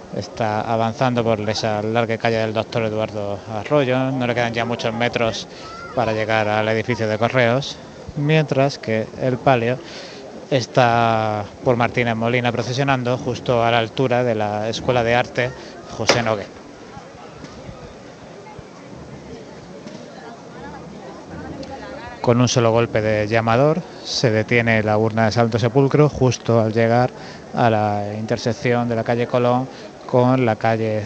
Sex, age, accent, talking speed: male, 30-49, Spanish, 130 wpm